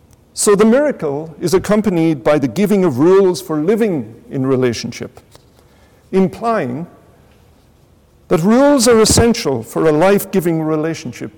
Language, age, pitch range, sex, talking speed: English, 60-79, 135-210 Hz, male, 120 wpm